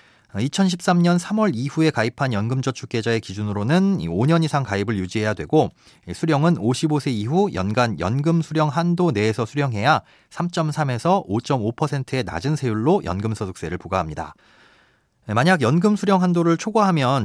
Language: Korean